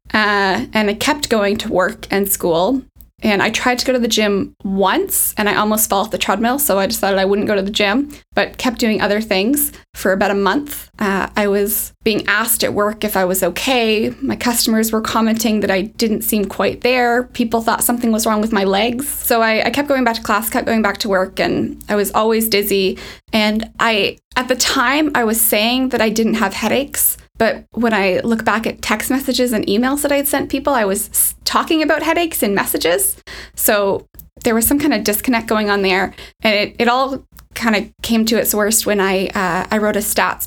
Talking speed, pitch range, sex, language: 225 wpm, 200-235 Hz, female, English